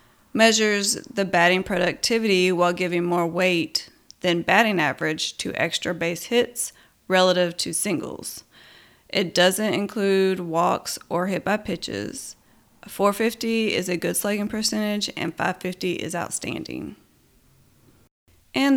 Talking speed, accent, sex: 120 wpm, American, female